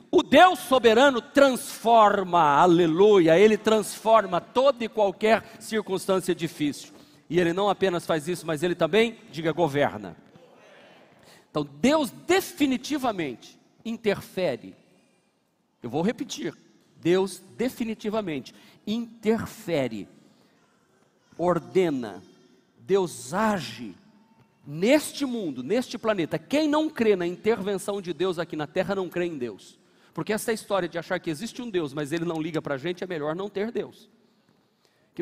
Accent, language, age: Brazilian, Portuguese, 50-69